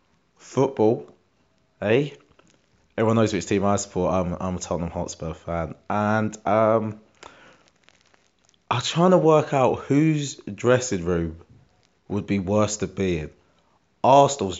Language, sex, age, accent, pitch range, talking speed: English, male, 30-49, British, 90-115 Hz, 125 wpm